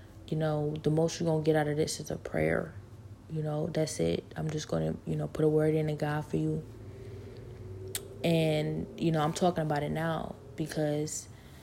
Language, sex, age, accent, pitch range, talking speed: English, female, 20-39, American, 110-160 Hz, 210 wpm